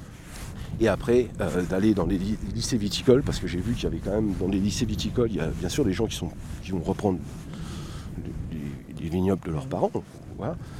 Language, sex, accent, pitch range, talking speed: French, male, French, 90-110 Hz, 230 wpm